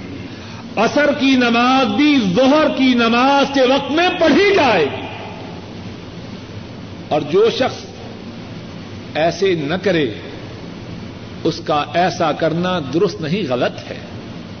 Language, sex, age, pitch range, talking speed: Urdu, male, 50-69, 165-265 Hz, 105 wpm